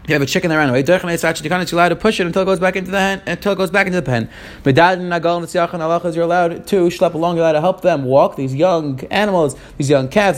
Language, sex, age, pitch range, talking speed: English, male, 30-49, 150-185 Hz, 185 wpm